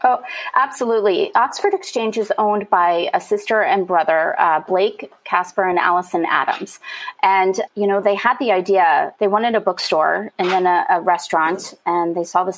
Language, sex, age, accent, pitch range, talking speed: English, female, 30-49, American, 180-225 Hz, 175 wpm